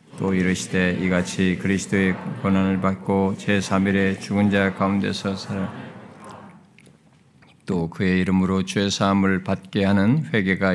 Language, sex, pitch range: Korean, male, 95-110 Hz